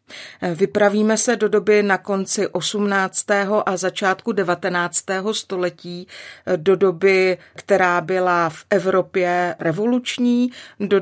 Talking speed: 105 wpm